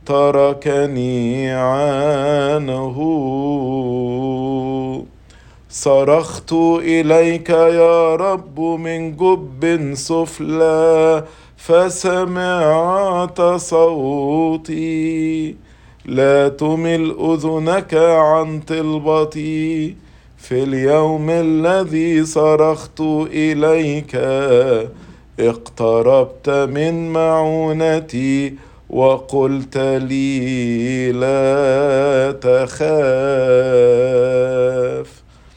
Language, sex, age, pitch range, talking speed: English, male, 50-69, 135-160 Hz, 45 wpm